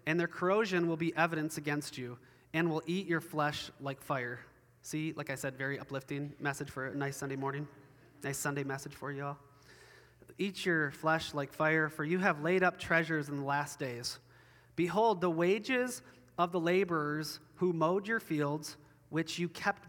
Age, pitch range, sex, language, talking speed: 30-49, 135-165 Hz, male, English, 185 wpm